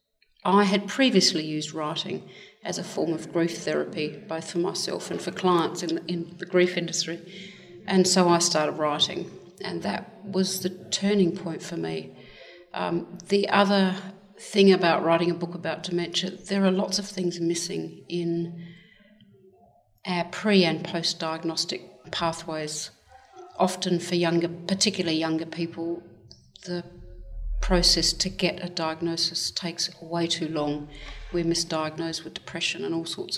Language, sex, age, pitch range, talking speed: English, female, 50-69, 165-185 Hz, 145 wpm